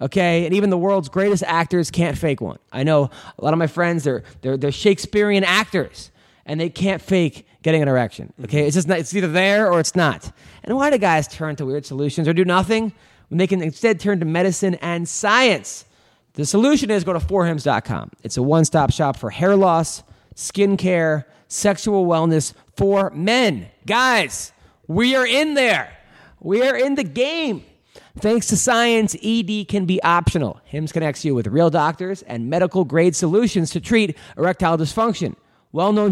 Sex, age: male, 30-49